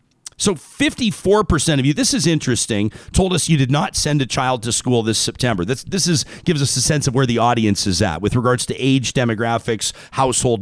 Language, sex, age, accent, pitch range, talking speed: English, male, 40-59, American, 105-150 Hz, 210 wpm